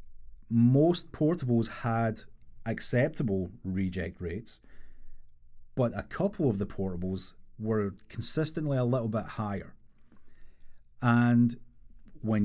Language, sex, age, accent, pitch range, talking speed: English, male, 30-49, British, 95-120 Hz, 95 wpm